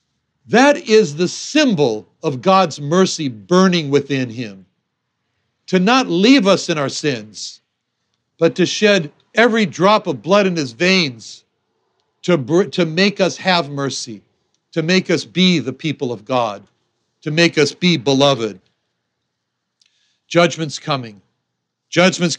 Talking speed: 130 wpm